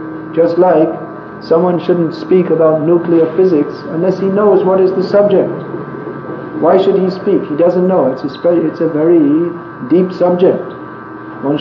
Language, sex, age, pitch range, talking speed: English, male, 50-69, 145-180 Hz, 150 wpm